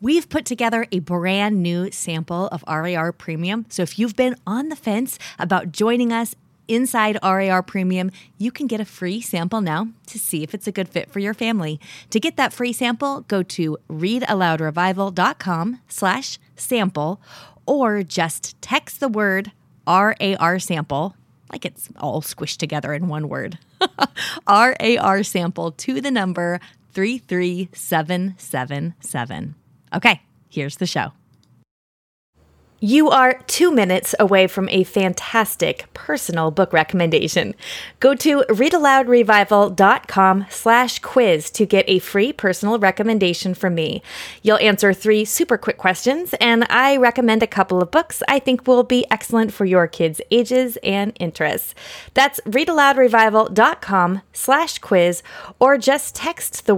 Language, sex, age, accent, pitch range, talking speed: English, female, 30-49, American, 175-240 Hz, 135 wpm